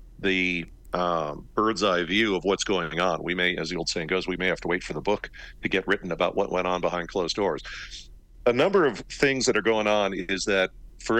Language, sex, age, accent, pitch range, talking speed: English, male, 50-69, American, 85-110 Hz, 240 wpm